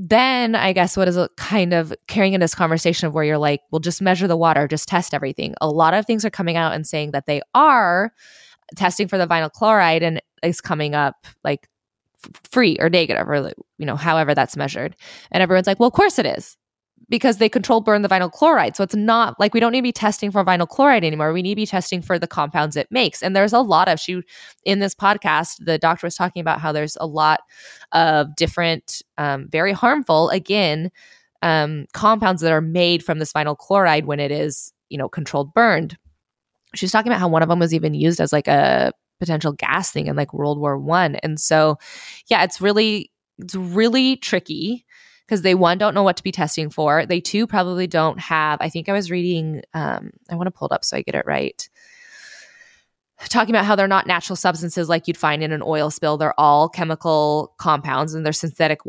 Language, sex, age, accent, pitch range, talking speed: English, female, 20-39, American, 155-200 Hz, 220 wpm